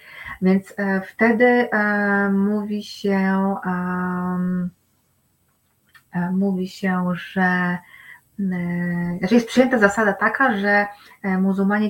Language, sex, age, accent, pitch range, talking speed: Polish, female, 30-49, native, 180-220 Hz, 65 wpm